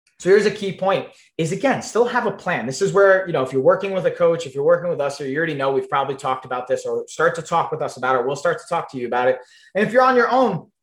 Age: 20-39